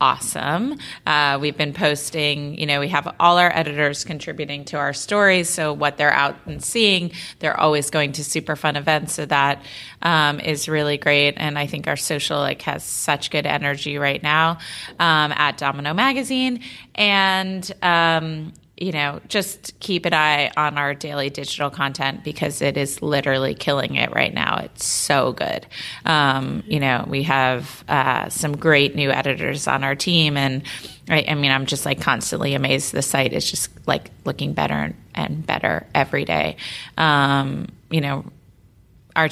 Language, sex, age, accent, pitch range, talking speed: English, female, 30-49, American, 140-160 Hz, 170 wpm